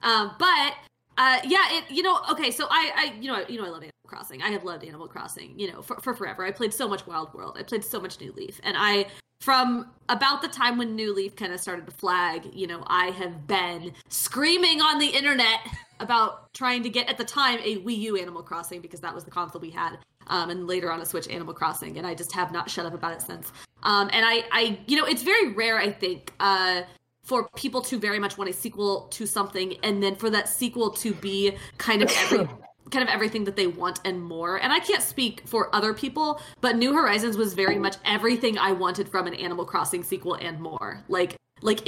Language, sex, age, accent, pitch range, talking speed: English, female, 20-39, American, 185-245 Hz, 240 wpm